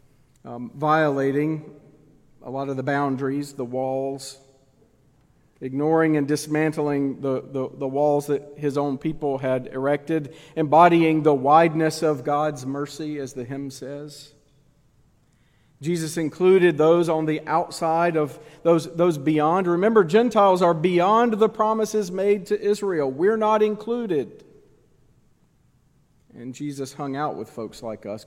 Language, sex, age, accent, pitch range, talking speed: English, male, 40-59, American, 135-165 Hz, 130 wpm